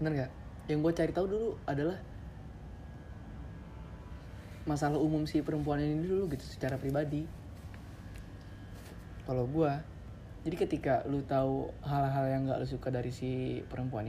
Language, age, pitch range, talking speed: Indonesian, 20-39, 100-145 Hz, 130 wpm